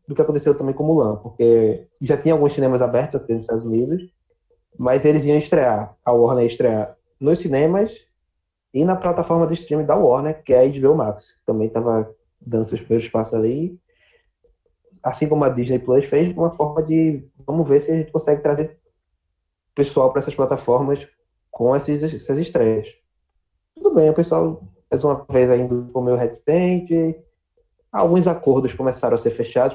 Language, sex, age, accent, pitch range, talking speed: Portuguese, male, 20-39, Brazilian, 115-155 Hz, 180 wpm